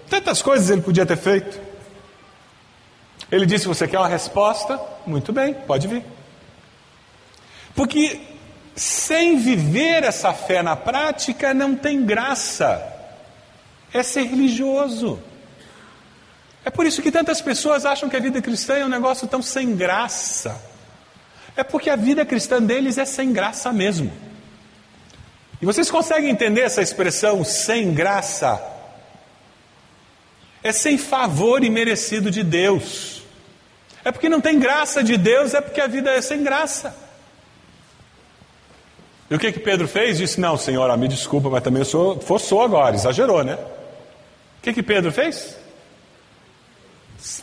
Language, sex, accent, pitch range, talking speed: Portuguese, male, Brazilian, 170-275 Hz, 140 wpm